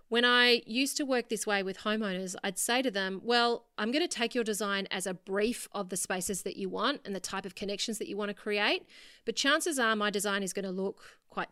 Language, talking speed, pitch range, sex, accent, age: English, 240 wpm, 195-255 Hz, female, Australian, 30-49